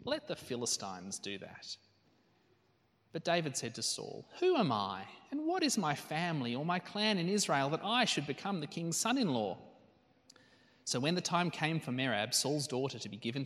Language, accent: English, Australian